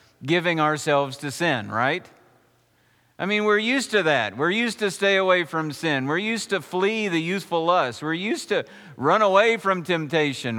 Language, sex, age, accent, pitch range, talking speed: English, male, 50-69, American, 115-195 Hz, 180 wpm